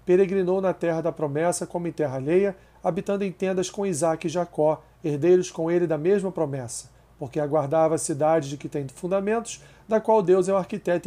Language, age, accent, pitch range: Portuguese, 40-59, Brazilian, 155-185 Hz